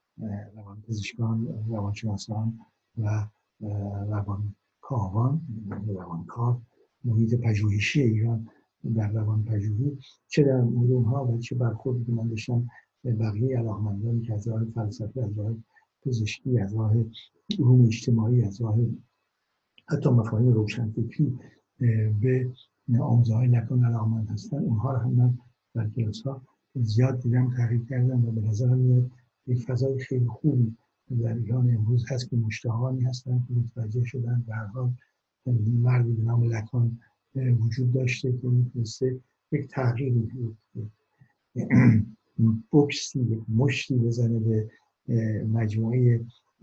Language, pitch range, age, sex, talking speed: Persian, 110-125 Hz, 60-79, male, 120 wpm